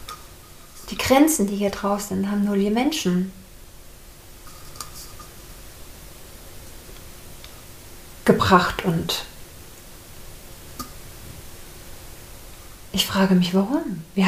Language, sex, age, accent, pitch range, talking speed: German, female, 40-59, German, 170-215 Hz, 70 wpm